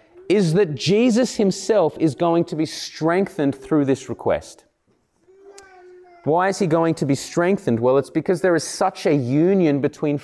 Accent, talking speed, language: Australian, 165 wpm, English